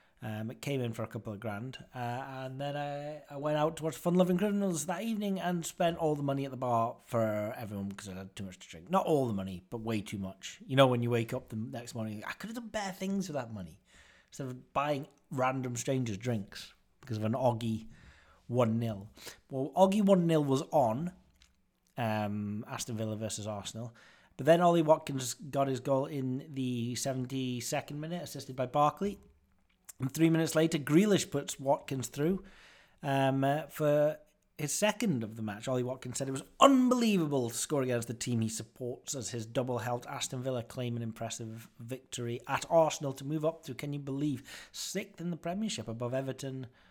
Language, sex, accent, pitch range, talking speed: English, male, British, 115-150 Hz, 195 wpm